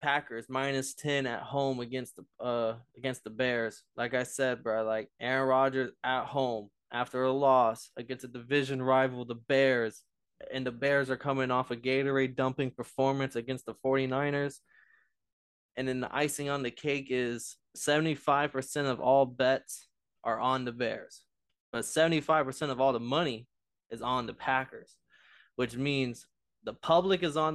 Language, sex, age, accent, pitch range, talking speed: English, male, 20-39, American, 120-140 Hz, 160 wpm